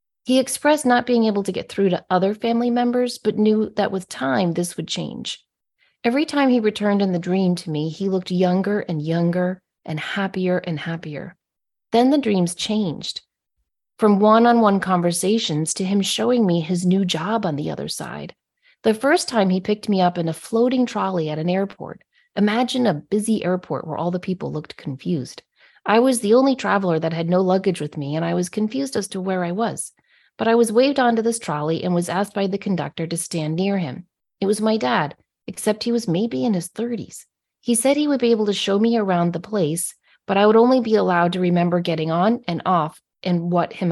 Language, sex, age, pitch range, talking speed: English, female, 30-49, 175-230 Hz, 210 wpm